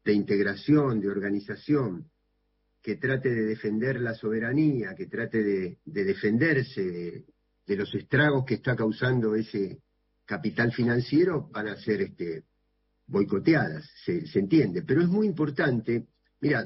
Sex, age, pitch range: male, 50-69, 110-145 Hz